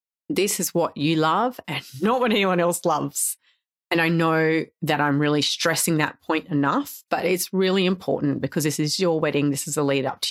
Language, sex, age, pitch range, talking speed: English, female, 30-49, 145-170 Hz, 210 wpm